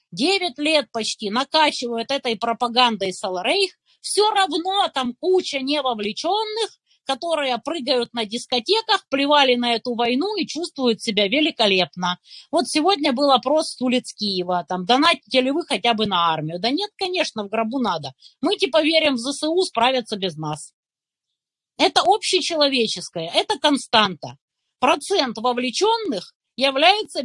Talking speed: 130 wpm